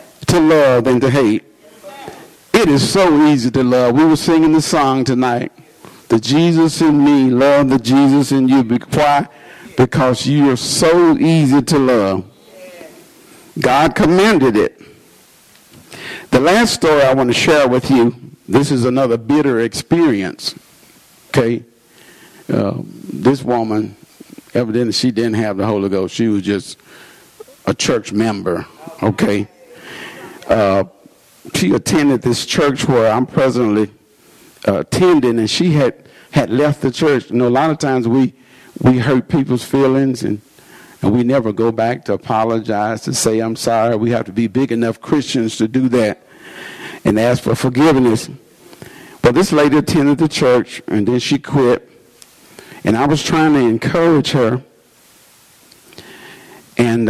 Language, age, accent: English, 50-69, American